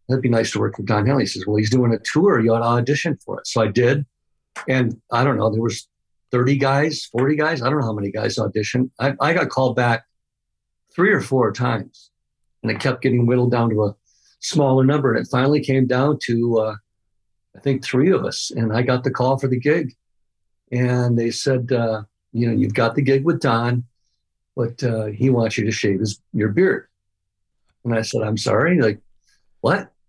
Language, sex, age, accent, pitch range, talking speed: English, male, 50-69, American, 110-135 Hz, 220 wpm